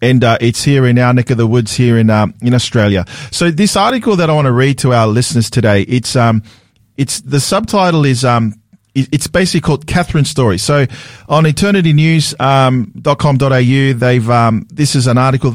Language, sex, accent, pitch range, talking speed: English, male, Australian, 120-160 Hz, 200 wpm